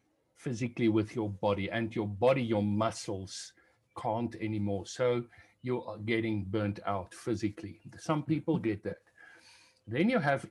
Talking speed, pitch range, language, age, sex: 135 wpm, 105-130 Hz, English, 60-79, male